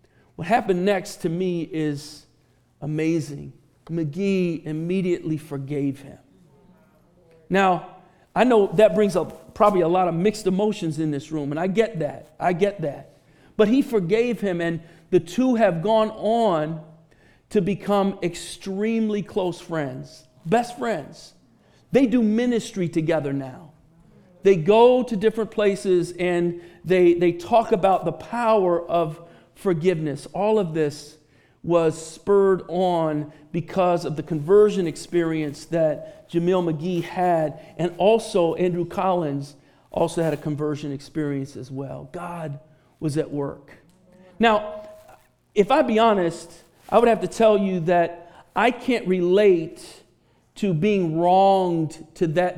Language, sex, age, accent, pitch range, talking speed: English, male, 50-69, American, 155-200 Hz, 135 wpm